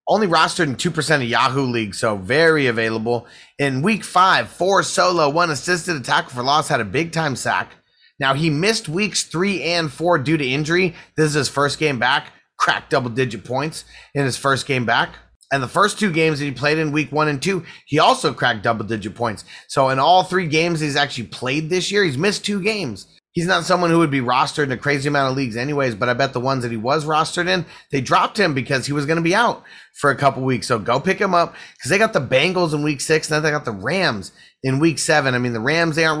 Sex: male